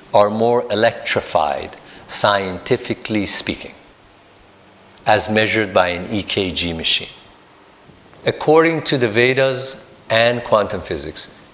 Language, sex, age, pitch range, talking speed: English, male, 50-69, 105-140 Hz, 95 wpm